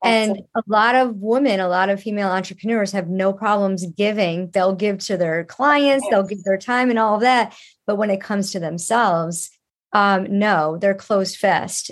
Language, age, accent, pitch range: English, 40-59, American, 185-225 Hz